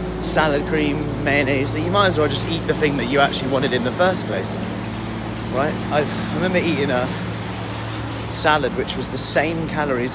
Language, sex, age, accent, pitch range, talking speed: English, male, 30-49, British, 105-140 Hz, 185 wpm